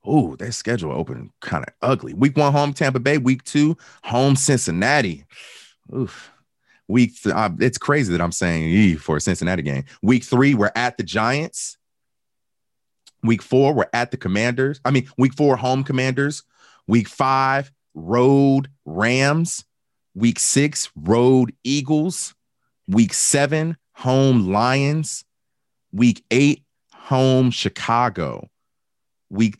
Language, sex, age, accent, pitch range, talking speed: English, male, 30-49, American, 100-135 Hz, 130 wpm